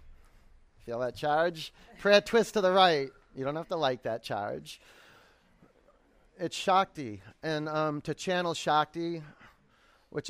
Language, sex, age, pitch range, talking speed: English, male, 30-49, 125-155 Hz, 135 wpm